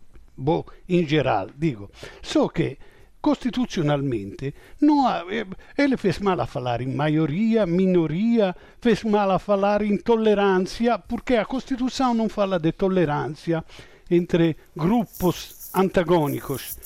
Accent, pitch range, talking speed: Italian, 175-235 Hz, 115 wpm